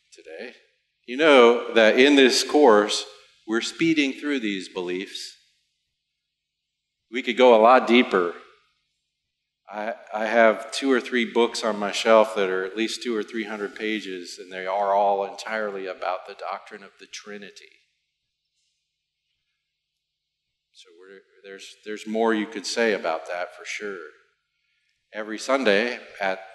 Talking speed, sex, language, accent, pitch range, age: 140 wpm, male, English, American, 100-130 Hz, 40-59